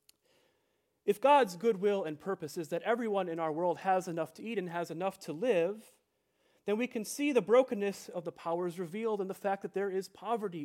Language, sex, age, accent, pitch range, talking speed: English, male, 30-49, American, 165-210 Hz, 210 wpm